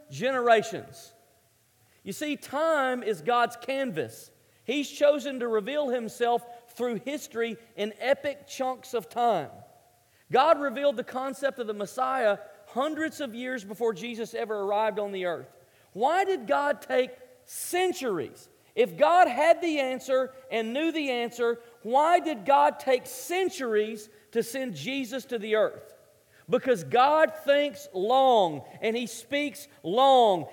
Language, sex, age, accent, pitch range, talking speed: English, male, 40-59, American, 215-270 Hz, 135 wpm